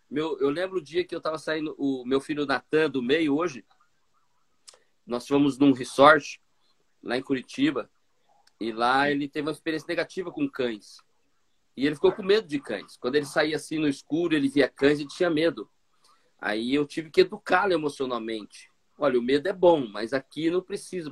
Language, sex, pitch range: Portuguese, male, 135-185 Hz